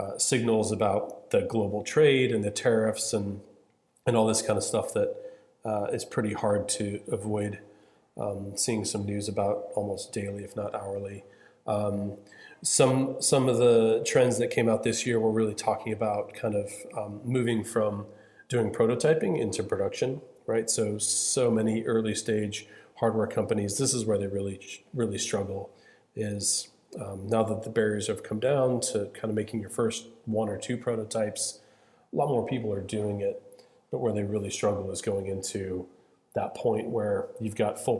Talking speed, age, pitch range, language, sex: 175 wpm, 30-49, 100-120 Hz, English, male